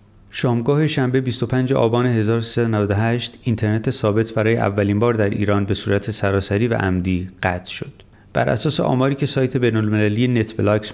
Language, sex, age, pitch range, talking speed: Persian, male, 30-49, 100-120 Hz, 145 wpm